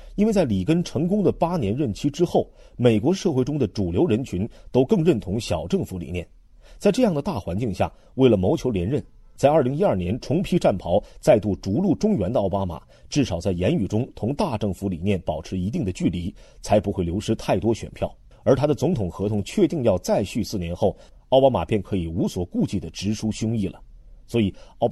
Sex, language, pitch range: male, Chinese, 90-135 Hz